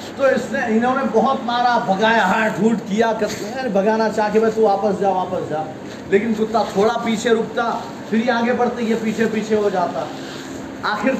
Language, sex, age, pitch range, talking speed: Urdu, male, 30-49, 215-240 Hz, 195 wpm